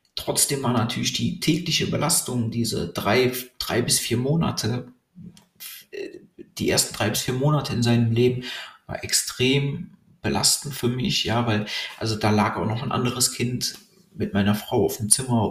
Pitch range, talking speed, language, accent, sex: 105-125 Hz, 165 wpm, German, German, male